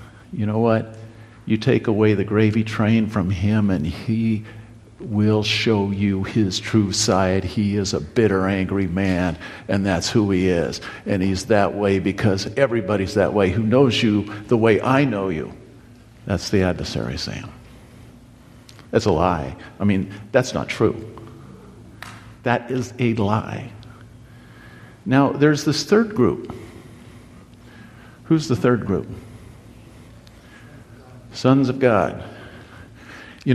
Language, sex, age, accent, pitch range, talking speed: English, male, 50-69, American, 105-120 Hz, 135 wpm